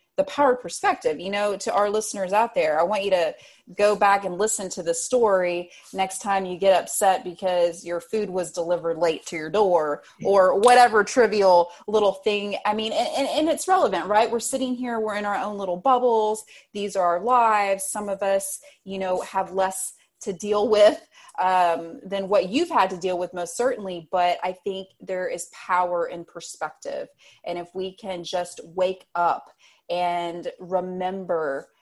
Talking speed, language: 185 wpm, English